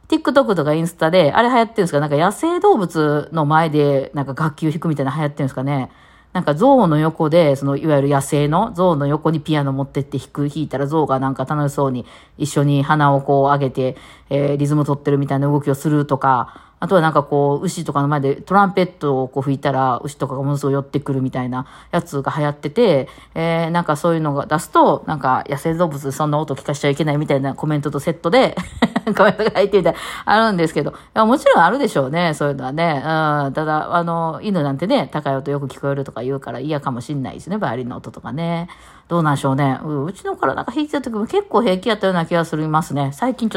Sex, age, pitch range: female, 40-59, 140-175 Hz